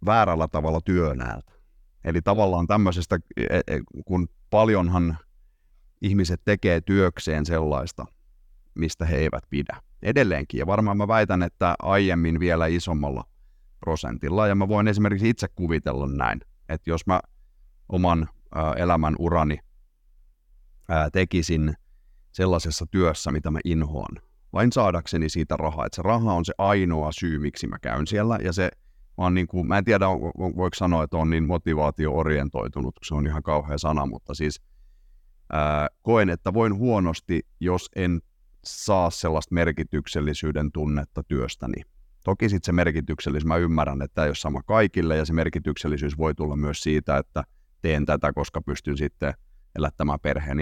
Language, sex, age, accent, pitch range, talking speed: Finnish, male, 30-49, native, 75-90 Hz, 140 wpm